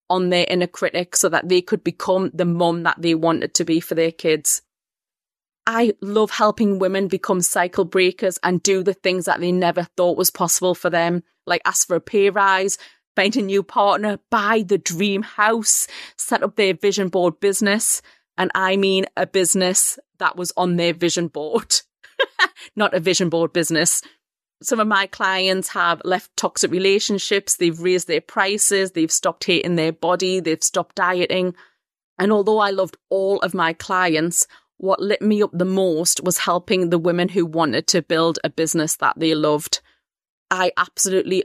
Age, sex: 30-49, female